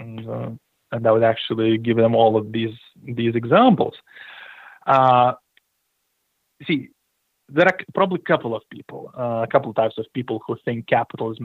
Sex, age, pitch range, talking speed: male, 30-49, 115-150 Hz, 170 wpm